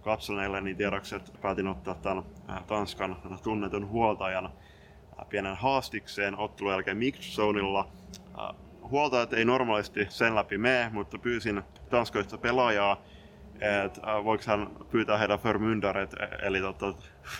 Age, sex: 20-39, male